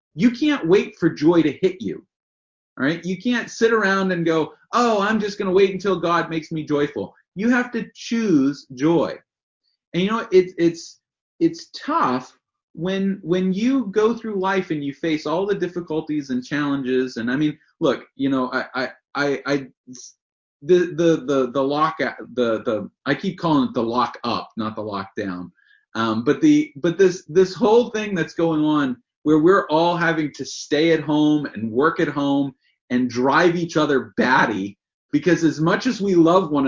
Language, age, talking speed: English, 30-49, 190 wpm